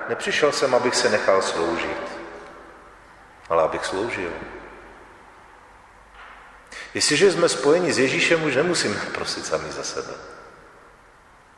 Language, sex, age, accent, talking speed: Czech, male, 40-59, native, 105 wpm